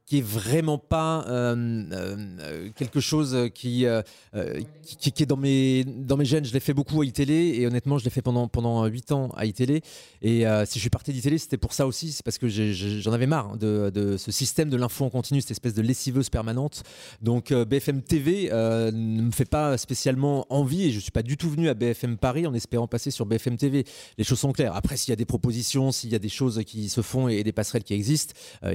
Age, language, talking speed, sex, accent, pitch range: 30-49, French, 250 wpm, male, French, 110-140 Hz